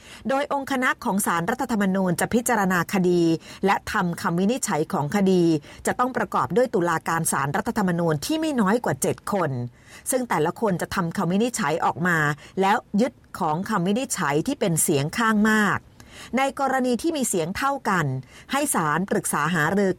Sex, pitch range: female, 165-230 Hz